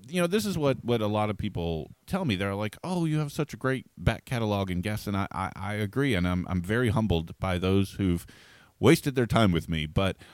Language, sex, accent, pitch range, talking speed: English, male, American, 90-130 Hz, 250 wpm